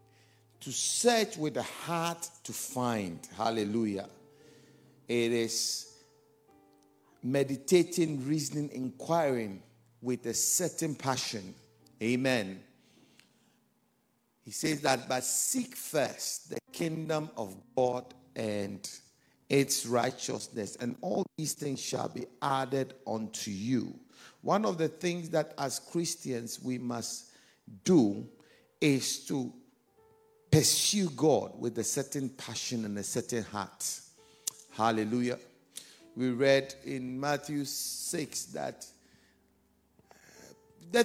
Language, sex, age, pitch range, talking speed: English, male, 50-69, 115-145 Hz, 100 wpm